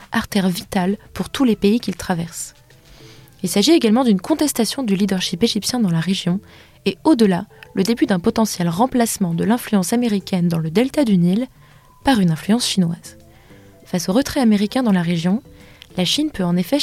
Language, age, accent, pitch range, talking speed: French, 20-39, French, 180-230 Hz, 180 wpm